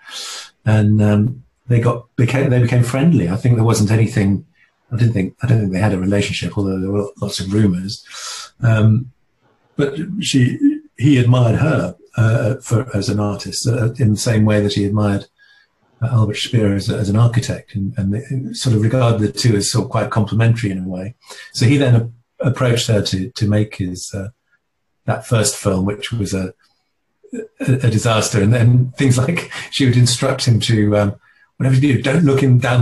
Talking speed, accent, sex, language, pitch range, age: 195 wpm, British, male, English, 105-125 Hz, 50-69